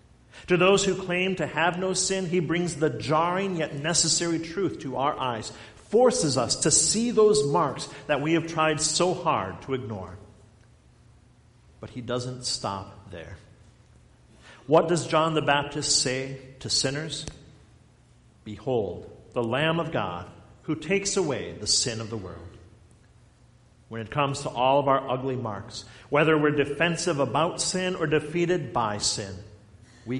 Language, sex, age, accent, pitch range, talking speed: English, male, 50-69, American, 115-170 Hz, 155 wpm